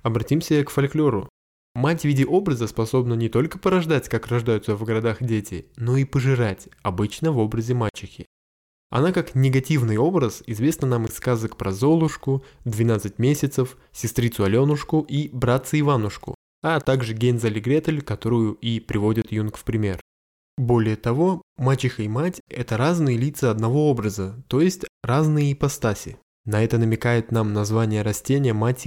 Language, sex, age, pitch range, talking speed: Russian, male, 20-39, 110-135 Hz, 150 wpm